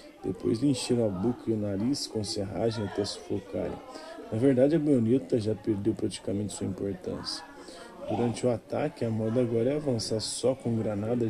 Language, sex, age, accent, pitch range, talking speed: Portuguese, male, 20-39, Brazilian, 110-120 Hz, 170 wpm